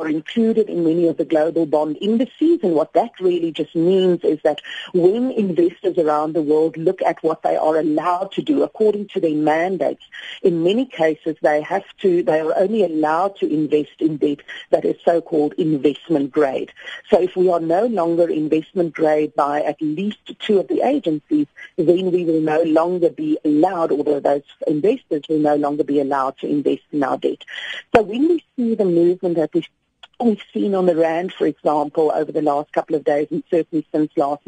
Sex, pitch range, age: female, 155-210 Hz, 40-59